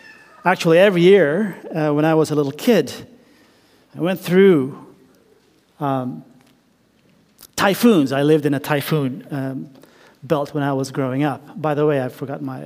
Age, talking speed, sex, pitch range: 40-59, 155 wpm, male, 150-210 Hz